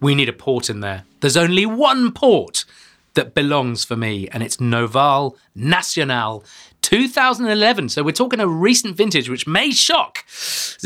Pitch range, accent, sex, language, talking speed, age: 120-160 Hz, British, male, English, 160 wpm, 30-49